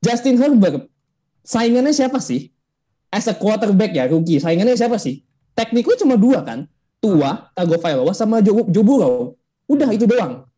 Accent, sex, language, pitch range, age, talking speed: native, male, Indonesian, 155-235 Hz, 20-39, 135 wpm